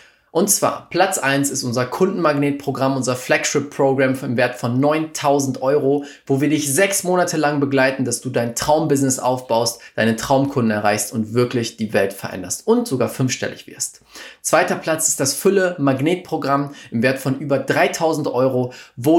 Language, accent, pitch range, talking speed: German, German, 125-155 Hz, 160 wpm